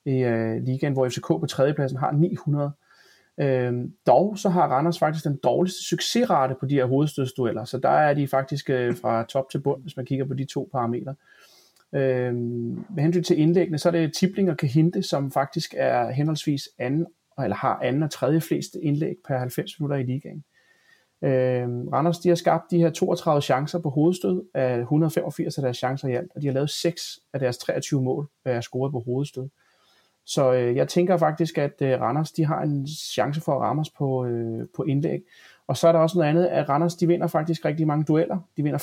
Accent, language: native, Danish